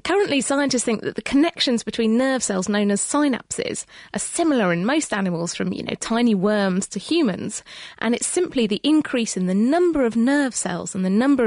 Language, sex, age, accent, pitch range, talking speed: English, female, 30-49, British, 195-260 Hz, 200 wpm